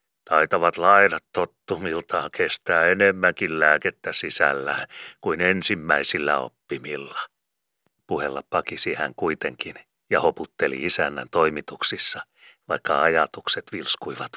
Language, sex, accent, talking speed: Finnish, male, native, 90 wpm